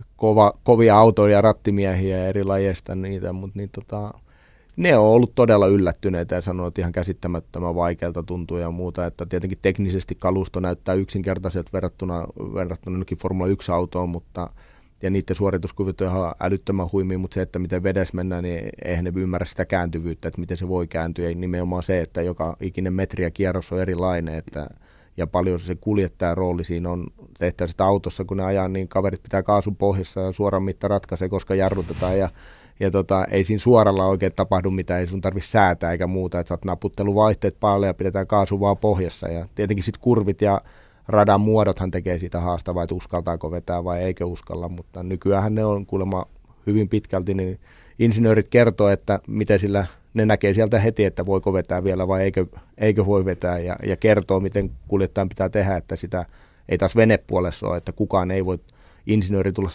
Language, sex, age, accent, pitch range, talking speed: Finnish, male, 30-49, native, 90-100 Hz, 180 wpm